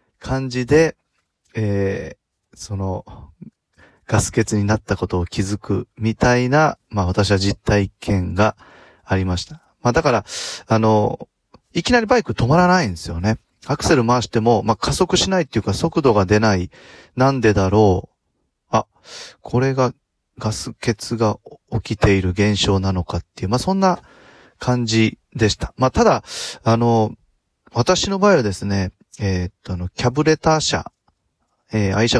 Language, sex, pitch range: Japanese, male, 100-125 Hz